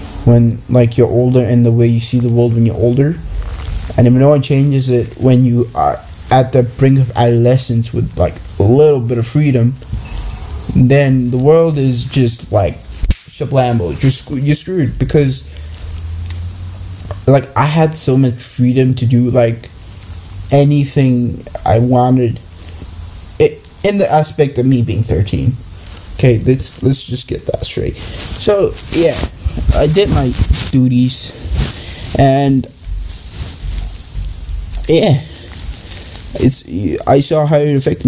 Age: 10-29